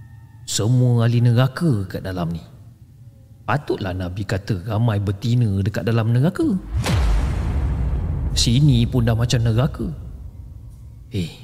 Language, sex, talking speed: Malay, male, 105 wpm